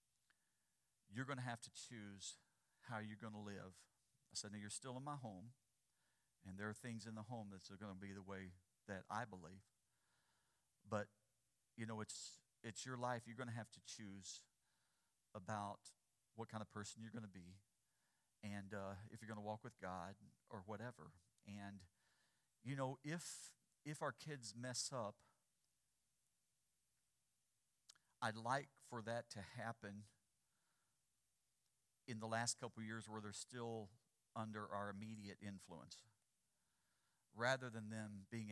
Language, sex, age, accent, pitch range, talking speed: English, male, 50-69, American, 100-115 Hz, 155 wpm